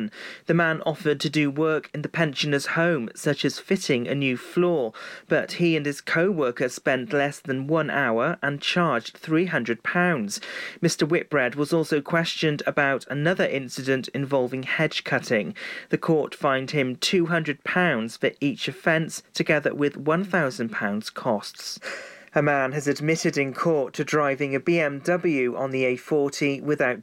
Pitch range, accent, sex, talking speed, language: 130-165 Hz, British, male, 145 wpm, English